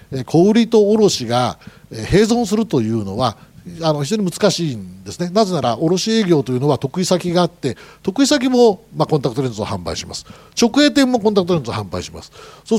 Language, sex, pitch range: Japanese, male, 125-200 Hz